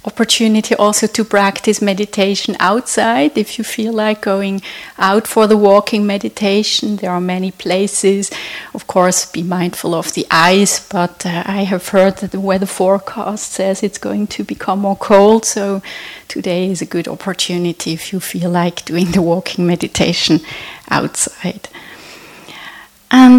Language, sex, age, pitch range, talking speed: English, female, 30-49, 185-225 Hz, 150 wpm